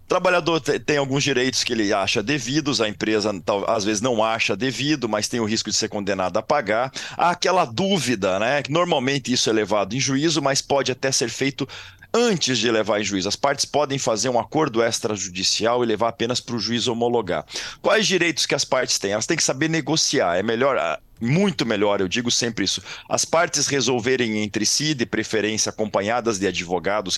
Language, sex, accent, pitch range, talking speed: Portuguese, male, Brazilian, 110-145 Hz, 195 wpm